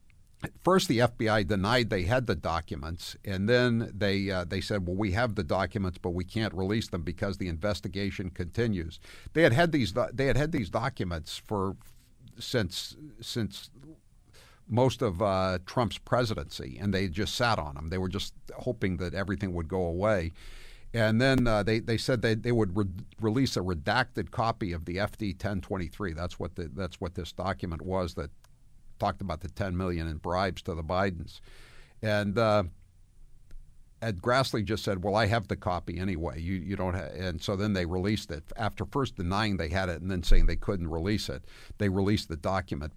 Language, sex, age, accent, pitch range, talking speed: English, male, 60-79, American, 90-110 Hz, 195 wpm